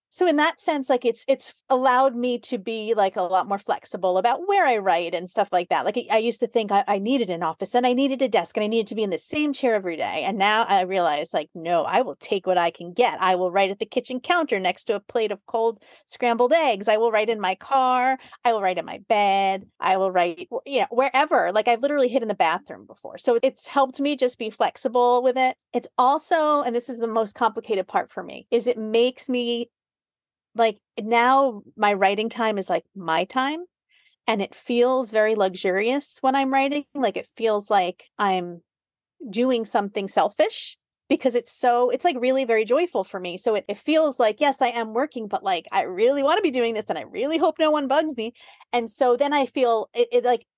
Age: 30-49